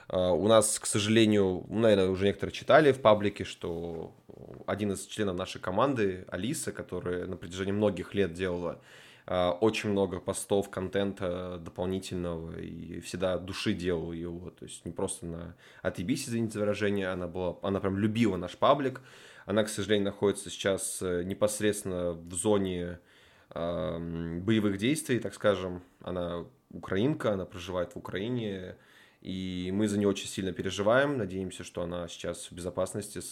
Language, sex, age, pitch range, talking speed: Russian, male, 20-39, 90-105 Hz, 140 wpm